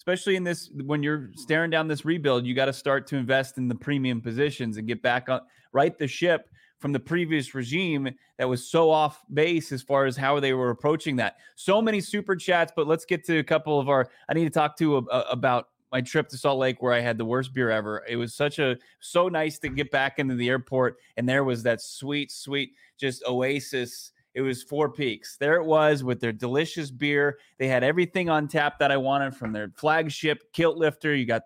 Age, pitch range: 20-39, 130-165 Hz